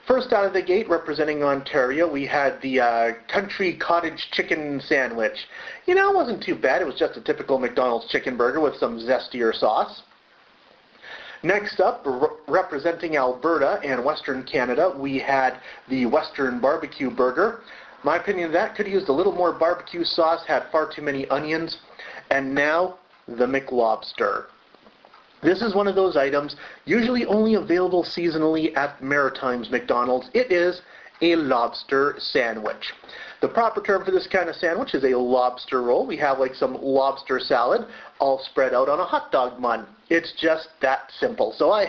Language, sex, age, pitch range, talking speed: English, male, 30-49, 135-175 Hz, 170 wpm